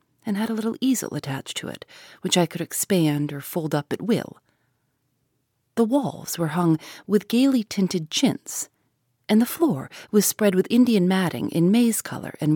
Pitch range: 145-210 Hz